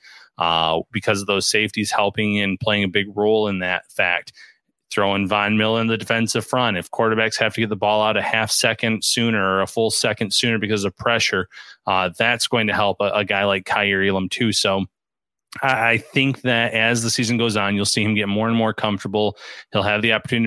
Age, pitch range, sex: 20-39, 100-115 Hz, male